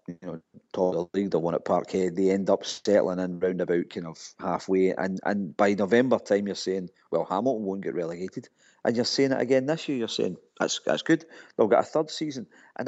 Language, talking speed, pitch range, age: English, 230 wpm, 95-125 Hz, 40-59